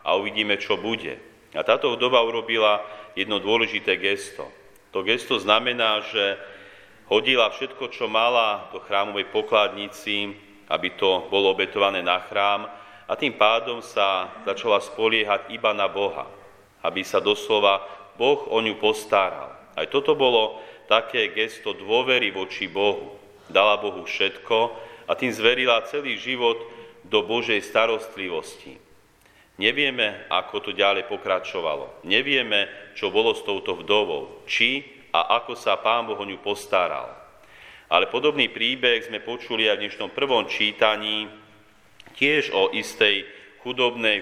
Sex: male